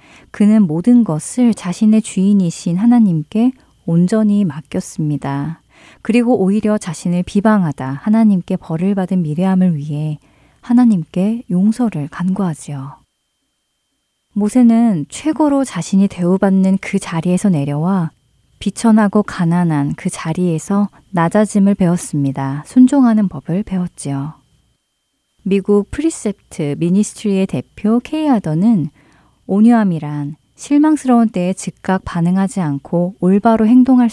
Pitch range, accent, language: 155-215 Hz, native, Korean